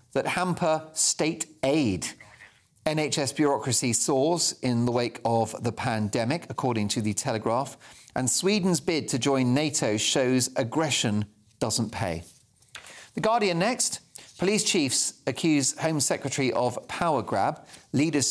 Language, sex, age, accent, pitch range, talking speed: English, male, 40-59, British, 115-155 Hz, 130 wpm